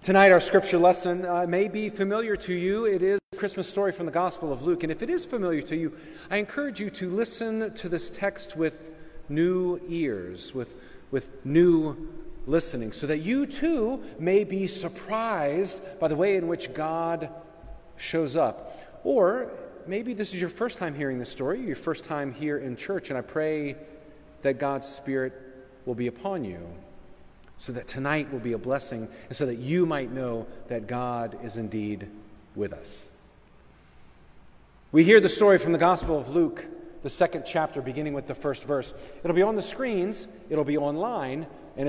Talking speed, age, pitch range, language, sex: 185 wpm, 40-59, 130-190 Hz, English, male